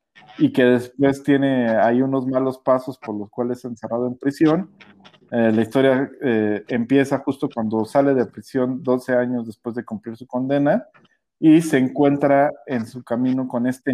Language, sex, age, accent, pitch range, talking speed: Spanish, male, 40-59, Mexican, 115-135 Hz, 170 wpm